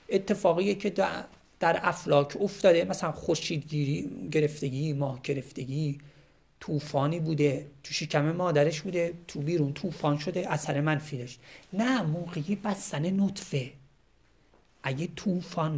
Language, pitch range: Persian, 140-165 Hz